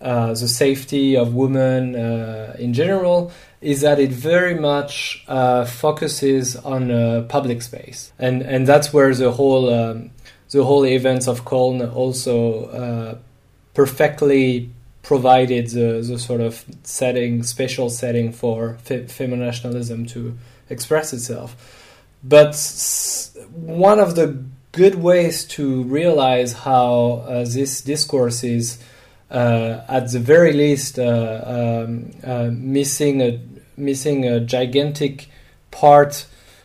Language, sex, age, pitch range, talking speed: English, male, 20-39, 120-140 Hz, 125 wpm